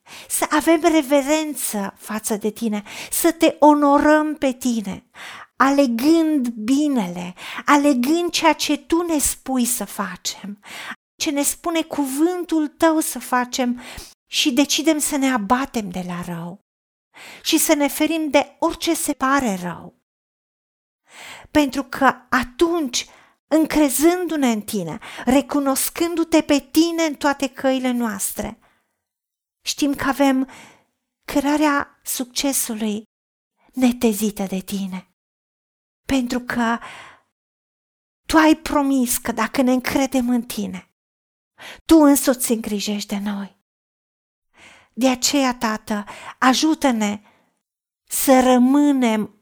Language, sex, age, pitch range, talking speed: Romanian, female, 40-59, 230-295 Hz, 105 wpm